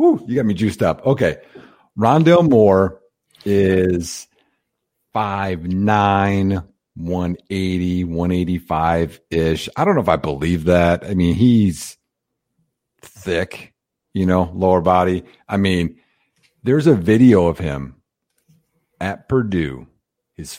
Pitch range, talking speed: 80-105 Hz, 110 wpm